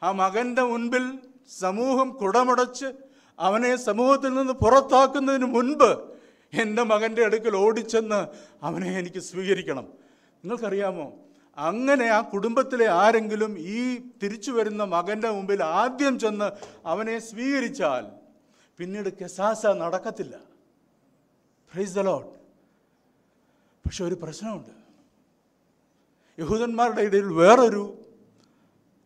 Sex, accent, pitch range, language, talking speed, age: male, native, 185-250 Hz, Malayalam, 85 wpm, 50-69